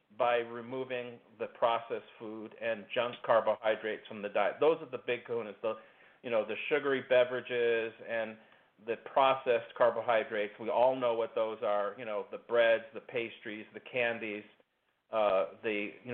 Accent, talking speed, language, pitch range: American, 160 wpm, English, 115-155 Hz